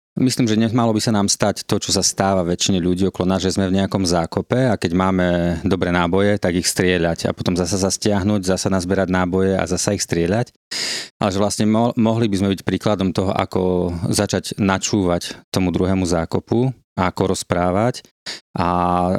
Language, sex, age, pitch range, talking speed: Slovak, male, 30-49, 95-110 Hz, 185 wpm